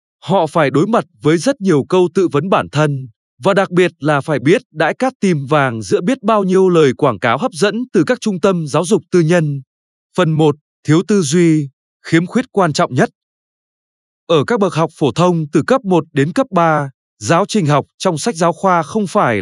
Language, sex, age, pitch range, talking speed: Vietnamese, male, 20-39, 150-205 Hz, 215 wpm